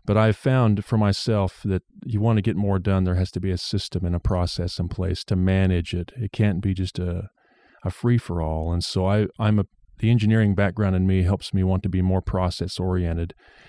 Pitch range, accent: 90-105 Hz, American